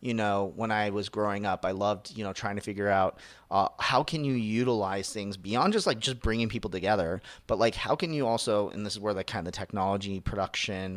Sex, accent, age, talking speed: male, American, 30-49, 235 wpm